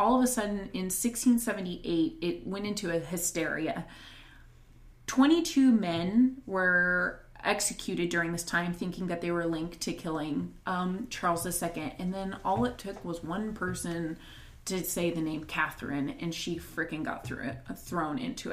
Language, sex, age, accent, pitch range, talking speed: English, female, 20-39, American, 165-200 Hz, 160 wpm